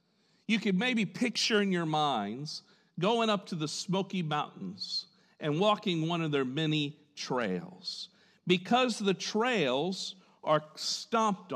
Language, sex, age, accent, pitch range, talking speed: English, male, 50-69, American, 165-205 Hz, 130 wpm